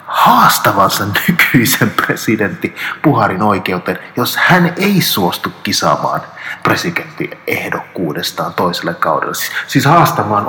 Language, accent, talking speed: Finnish, native, 90 wpm